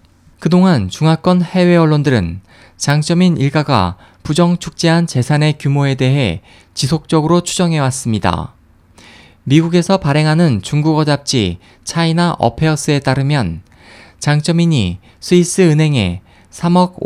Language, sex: Korean, male